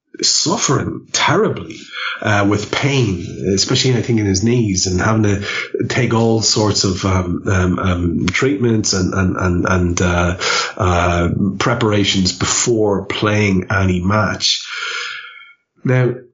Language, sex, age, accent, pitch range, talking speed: English, male, 30-49, Irish, 95-110 Hz, 120 wpm